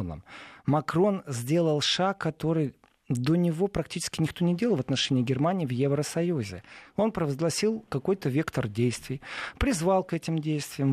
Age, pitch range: 40-59, 135-190 Hz